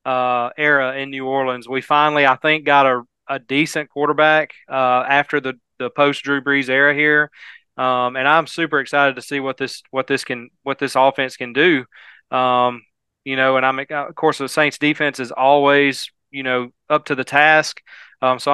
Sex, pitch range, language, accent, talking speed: male, 135-165 Hz, English, American, 195 wpm